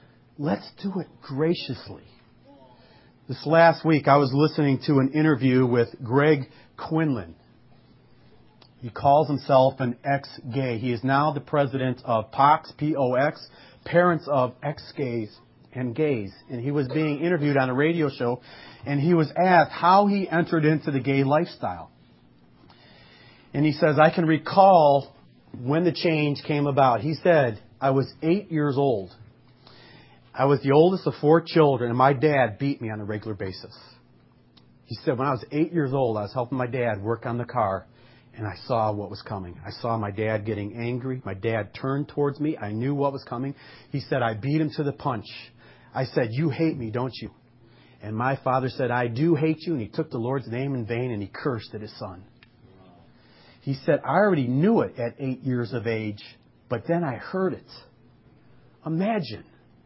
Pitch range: 115-155 Hz